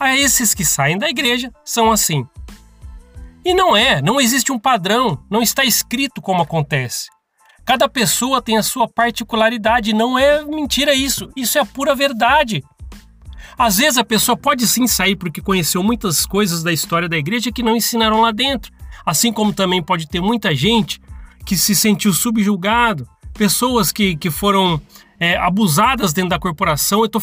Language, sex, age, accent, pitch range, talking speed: Portuguese, male, 30-49, Brazilian, 170-230 Hz, 170 wpm